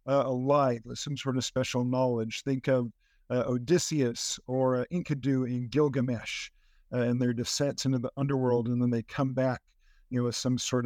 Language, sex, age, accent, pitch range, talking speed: English, male, 50-69, American, 125-150 Hz, 190 wpm